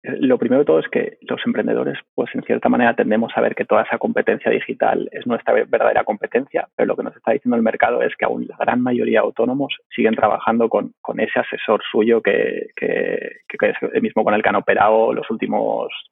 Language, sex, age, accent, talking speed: Spanish, male, 20-39, Spanish, 225 wpm